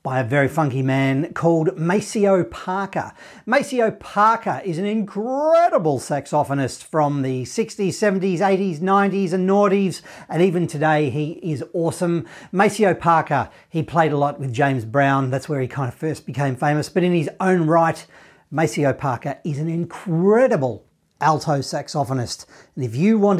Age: 40-59